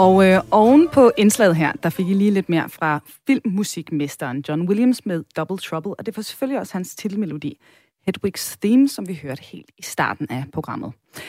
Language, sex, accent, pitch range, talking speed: Danish, female, native, 165-245 Hz, 190 wpm